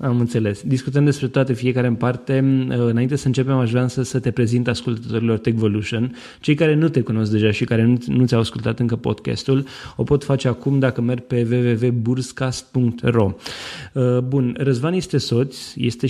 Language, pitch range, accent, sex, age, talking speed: Romanian, 120-135 Hz, native, male, 20-39, 165 wpm